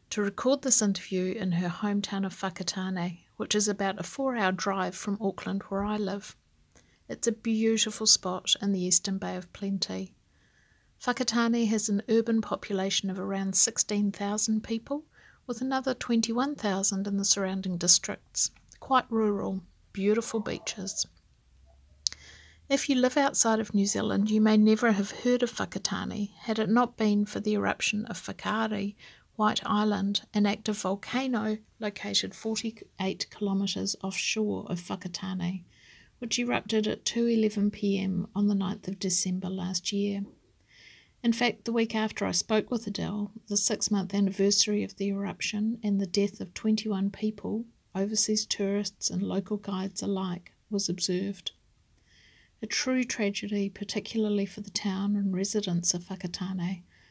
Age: 50-69